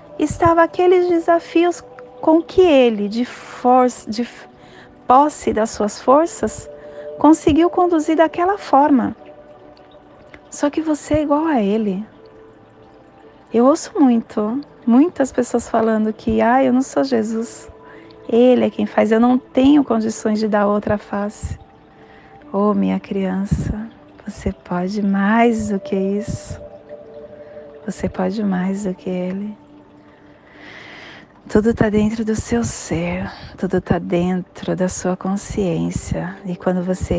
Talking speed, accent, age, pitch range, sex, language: 125 wpm, Brazilian, 30-49, 180-245 Hz, female, Portuguese